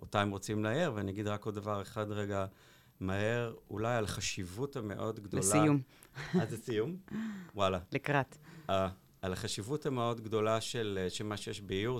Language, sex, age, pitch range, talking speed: Hebrew, male, 50-69, 95-120 Hz, 155 wpm